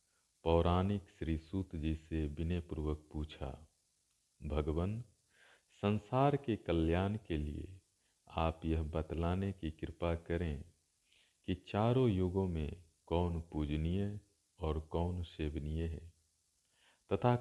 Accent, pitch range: native, 80-100 Hz